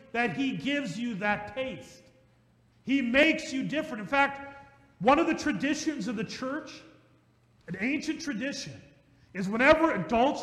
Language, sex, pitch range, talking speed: English, male, 185-300 Hz, 145 wpm